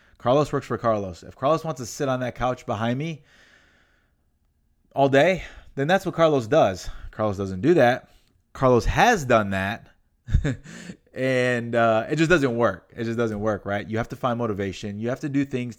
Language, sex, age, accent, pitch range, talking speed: English, male, 20-39, American, 105-145 Hz, 190 wpm